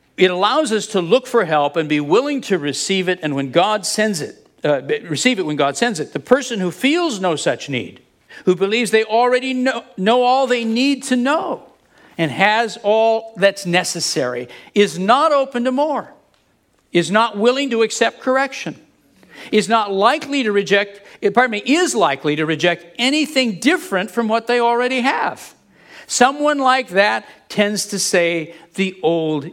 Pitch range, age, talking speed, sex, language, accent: 175-250 Hz, 60-79, 175 wpm, male, English, American